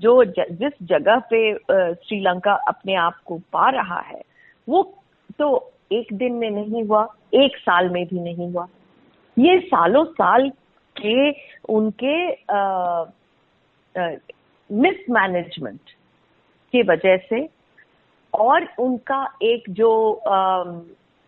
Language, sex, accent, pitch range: Hindi, female, native, 190-285 Hz